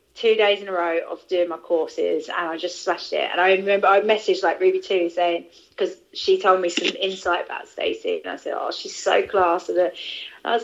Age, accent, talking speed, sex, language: 30-49, British, 230 wpm, female, English